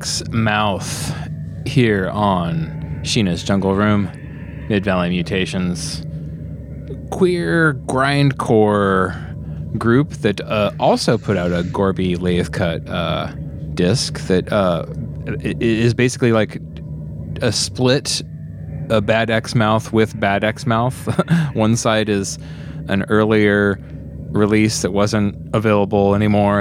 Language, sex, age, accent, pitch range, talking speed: English, male, 20-39, American, 90-120 Hz, 110 wpm